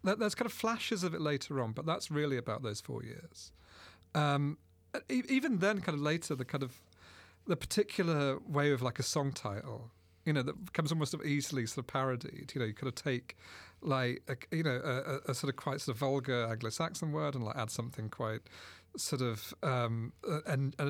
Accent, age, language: British, 40-59, English